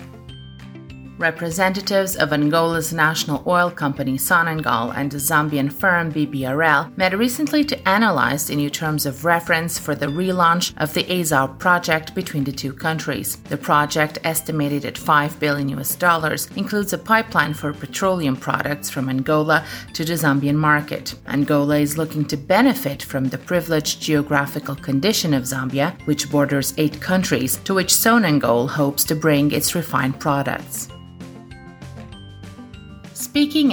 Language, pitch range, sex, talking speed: English, 140-185 Hz, female, 140 wpm